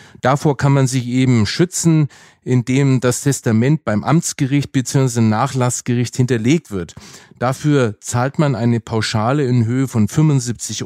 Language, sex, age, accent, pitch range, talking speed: German, male, 40-59, German, 110-140 Hz, 135 wpm